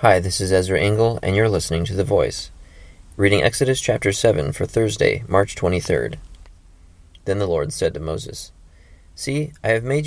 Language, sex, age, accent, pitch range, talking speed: English, male, 30-49, American, 80-105 Hz, 175 wpm